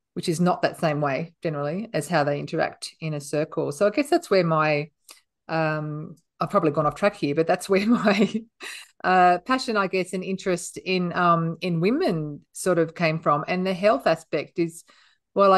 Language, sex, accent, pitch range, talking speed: English, female, Australian, 155-185 Hz, 195 wpm